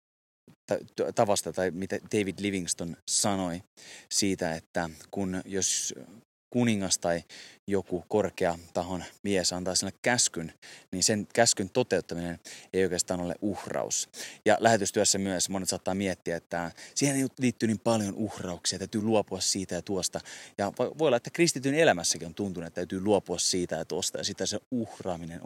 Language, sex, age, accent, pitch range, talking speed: Finnish, male, 20-39, native, 90-110 Hz, 145 wpm